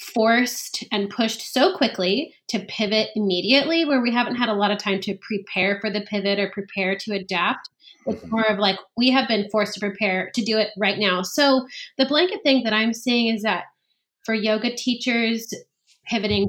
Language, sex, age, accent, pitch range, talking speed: English, female, 30-49, American, 195-235 Hz, 195 wpm